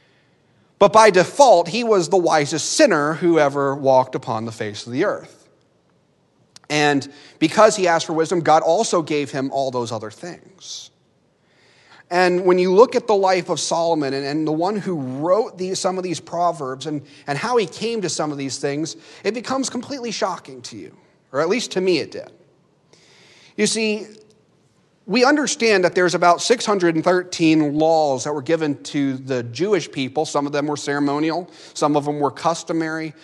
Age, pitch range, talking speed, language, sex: 40-59, 145-180 Hz, 175 wpm, English, male